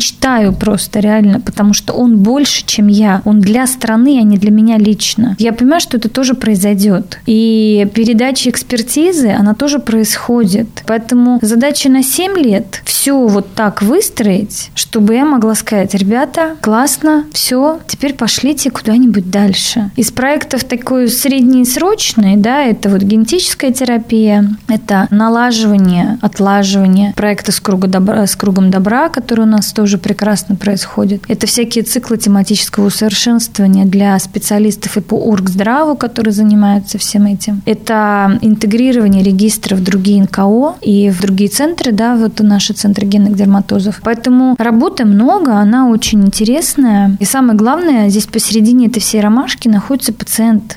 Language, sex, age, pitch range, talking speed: Russian, female, 20-39, 205-245 Hz, 140 wpm